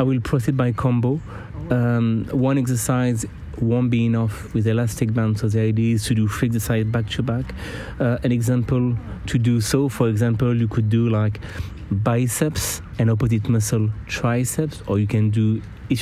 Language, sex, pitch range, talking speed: English, male, 110-130 Hz, 175 wpm